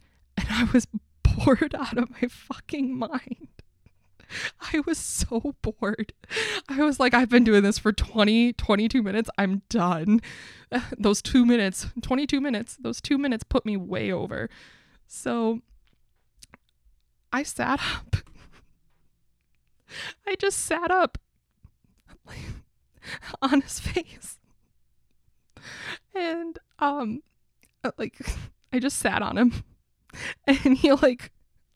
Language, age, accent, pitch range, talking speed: English, 20-39, American, 220-285 Hz, 115 wpm